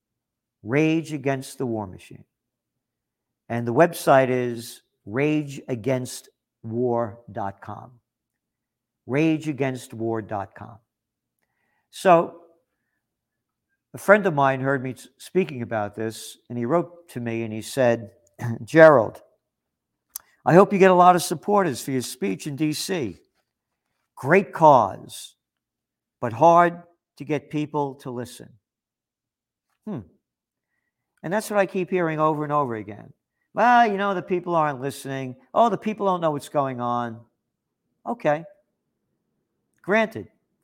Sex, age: male, 50-69